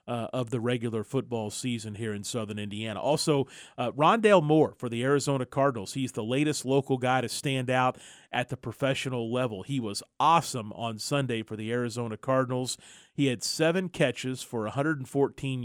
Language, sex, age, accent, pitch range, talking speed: English, male, 40-59, American, 110-135 Hz, 175 wpm